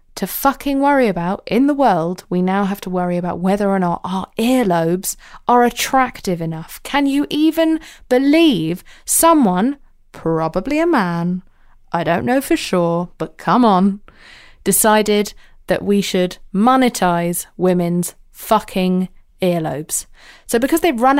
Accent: British